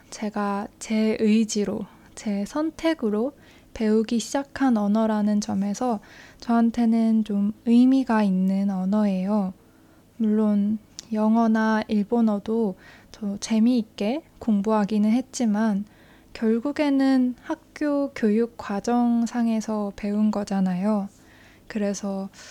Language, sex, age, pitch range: Korean, female, 20-39, 205-240 Hz